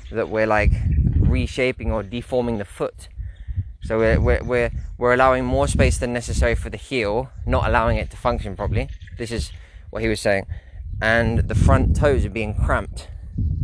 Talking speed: 175 wpm